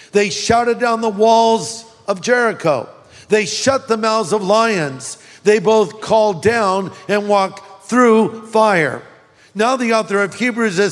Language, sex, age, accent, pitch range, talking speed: English, male, 50-69, American, 185-225 Hz, 150 wpm